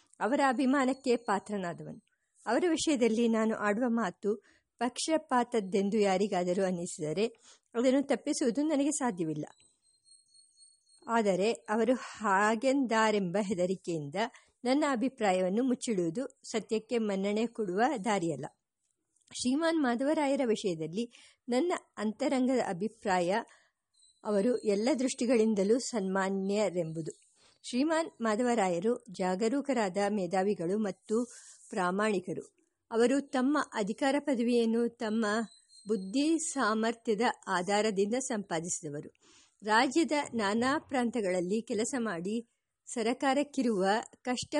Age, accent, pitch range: 50-69, Indian, 200-255 Hz